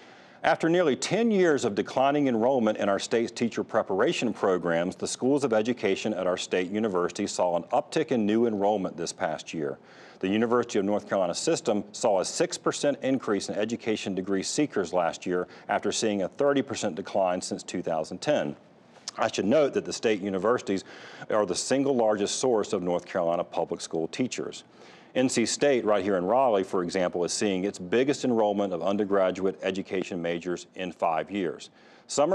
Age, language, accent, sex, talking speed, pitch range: 40-59, English, American, male, 175 wpm, 95-130 Hz